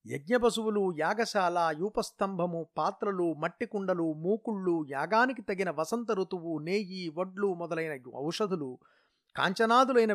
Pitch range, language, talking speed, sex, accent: 160-210 Hz, Telugu, 95 wpm, male, native